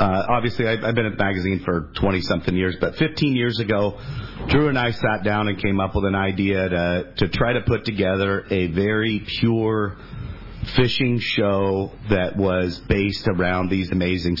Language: English